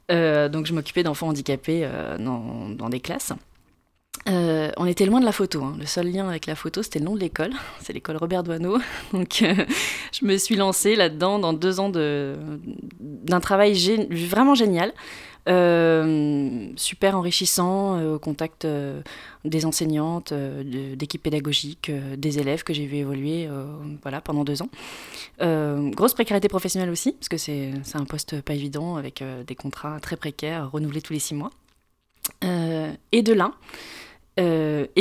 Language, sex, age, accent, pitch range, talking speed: French, female, 20-39, French, 145-180 Hz, 175 wpm